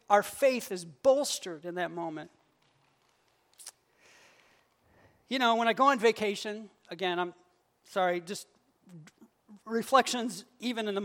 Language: English